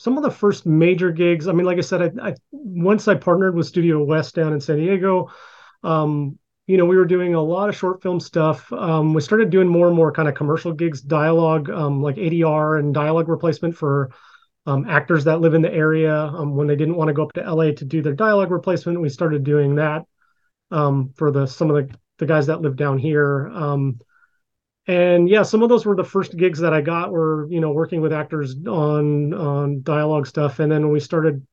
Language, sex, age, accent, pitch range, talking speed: English, male, 30-49, American, 150-175 Hz, 225 wpm